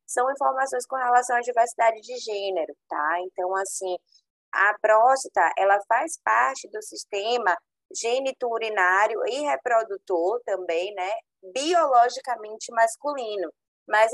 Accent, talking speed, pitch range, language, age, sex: Brazilian, 110 wpm, 185-250 Hz, Portuguese, 20-39, female